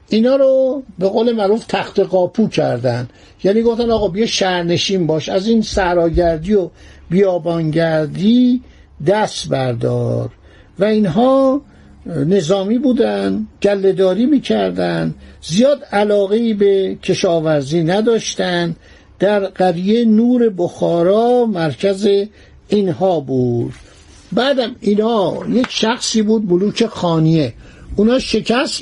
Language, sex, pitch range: Persian, male, 160-220 Hz